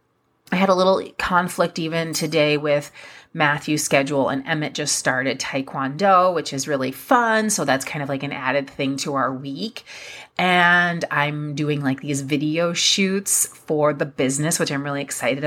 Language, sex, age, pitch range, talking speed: English, female, 30-49, 140-175 Hz, 170 wpm